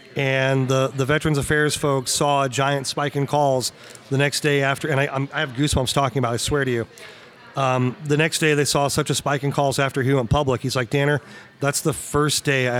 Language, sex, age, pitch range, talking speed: English, male, 30-49, 130-150 Hz, 235 wpm